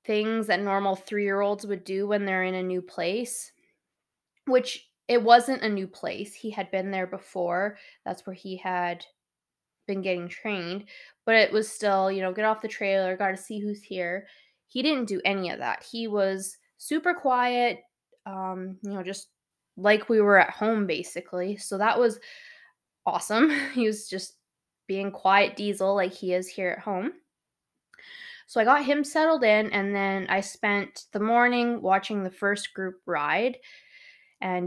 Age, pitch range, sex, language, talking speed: 10-29, 190-235 Hz, female, English, 170 wpm